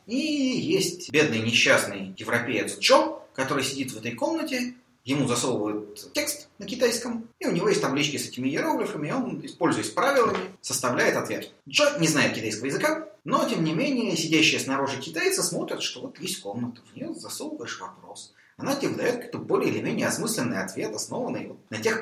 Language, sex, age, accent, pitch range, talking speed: Russian, male, 30-49, native, 115-185 Hz, 170 wpm